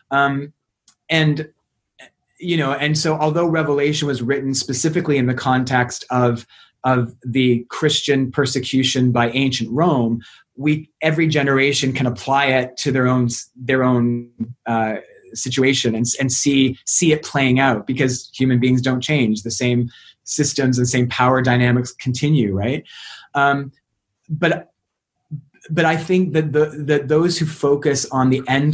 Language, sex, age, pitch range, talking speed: English, male, 30-49, 125-150 Hz, 145 wpm